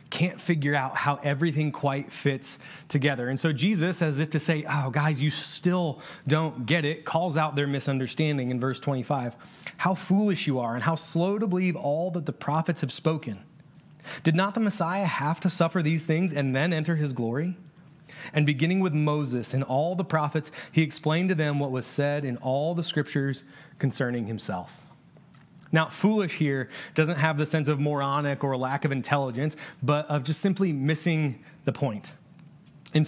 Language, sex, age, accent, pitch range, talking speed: English, male, 30-49, American, 145-165 Hz, 180 wpm